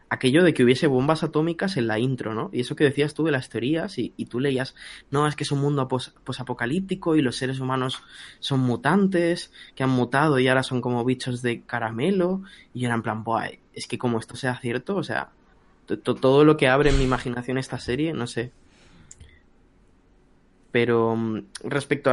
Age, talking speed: 20-39, 195 wpm